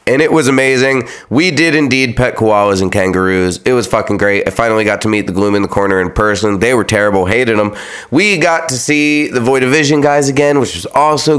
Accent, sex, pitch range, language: American, male, 95-130 Hz, English